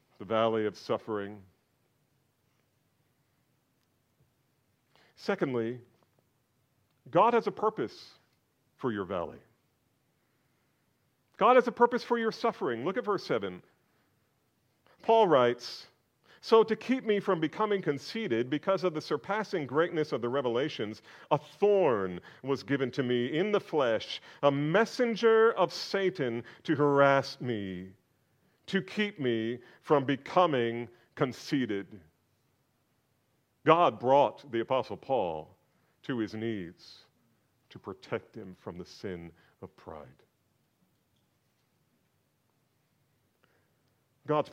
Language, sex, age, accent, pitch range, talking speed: English, male, 50-69, American, 115-155 Hz, 105 wpm